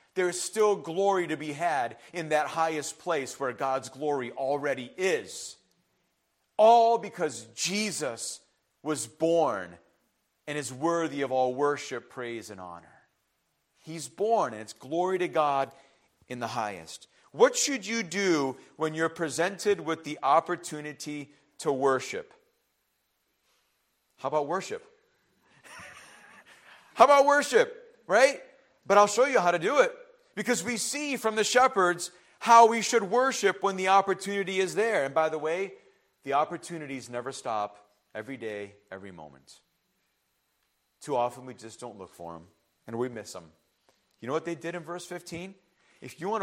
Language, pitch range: English, 130-205 Hz